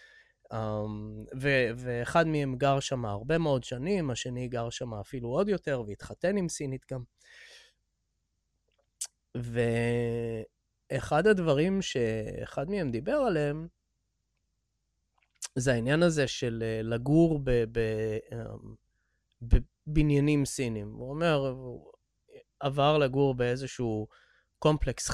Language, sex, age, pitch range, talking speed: English, male, 20-39, 120-150 Hz, 90 wpm